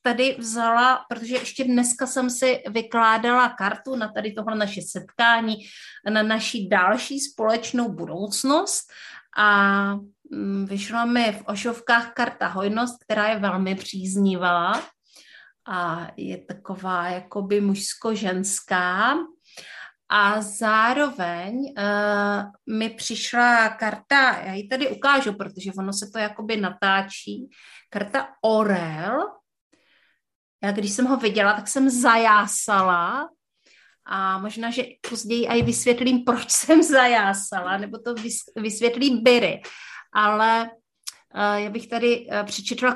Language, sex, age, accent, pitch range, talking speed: Czech, female, 30-49, native, 200-245 Hz, 110 wpm